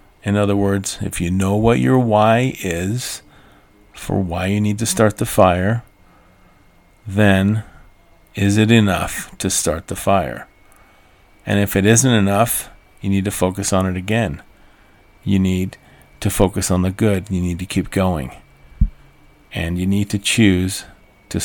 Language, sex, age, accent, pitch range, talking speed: English, male, 40-59, American, 90-105 Hz, 155 wpm